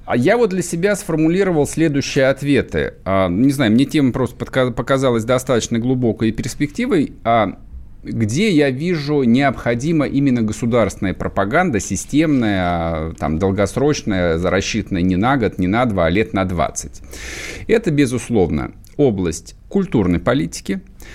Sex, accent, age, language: male, native, 50-69, Russian